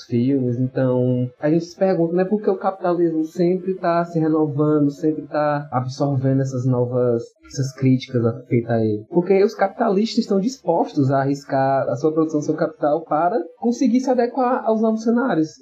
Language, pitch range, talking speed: Portuguese, 140-185 Hz, 170 wpm